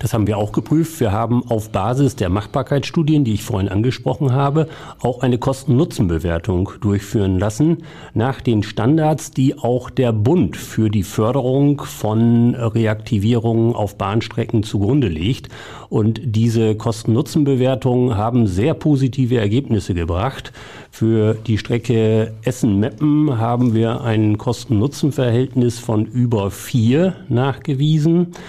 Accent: German